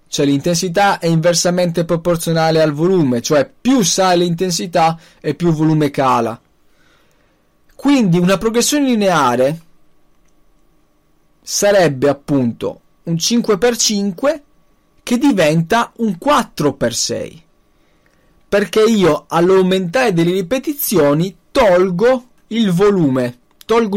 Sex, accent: male, native